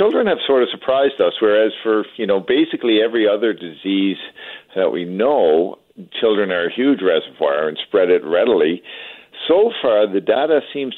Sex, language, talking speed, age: male, English, 170 wpm, 50-69